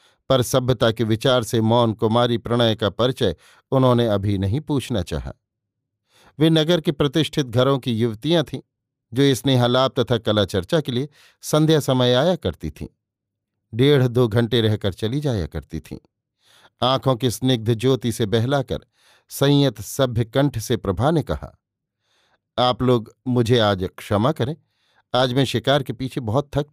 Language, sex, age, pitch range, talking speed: Hindi, male, 50-69, 110-135 Hz, 155 wpm